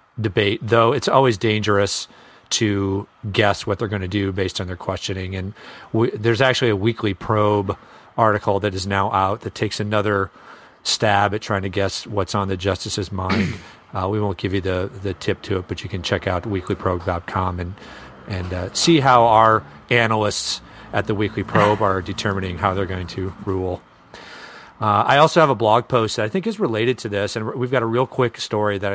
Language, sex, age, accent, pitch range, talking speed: English, male, 40-59, American, 95-110 Hz, 200 wpm